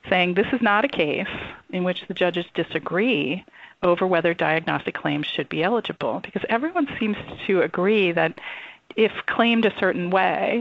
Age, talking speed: 40-59, 165 wpm